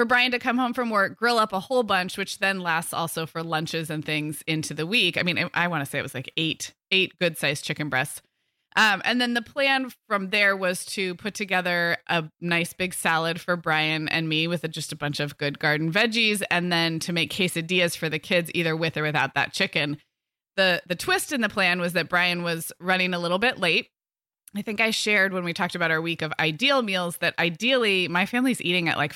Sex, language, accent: female, English, American